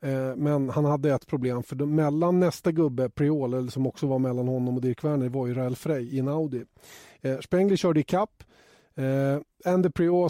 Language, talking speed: Swedish, 180 wpm